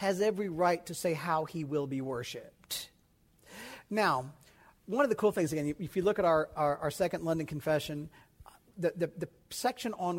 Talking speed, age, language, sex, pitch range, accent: 190 wpm, 40-59, English, male, 155-220 Hz, American